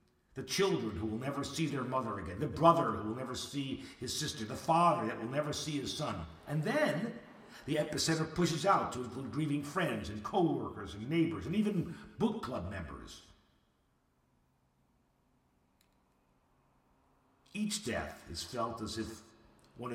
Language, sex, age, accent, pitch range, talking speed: English, male, 50-69, American, 120-180 Hz, 155 wpm